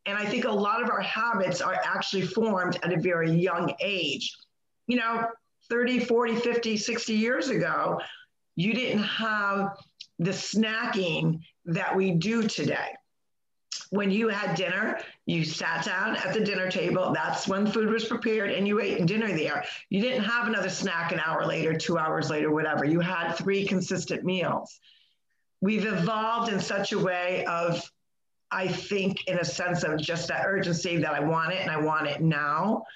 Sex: female